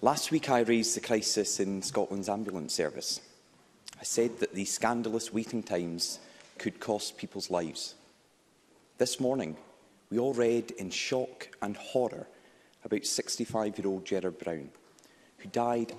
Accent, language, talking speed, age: British, English, 145 wpm, 30-49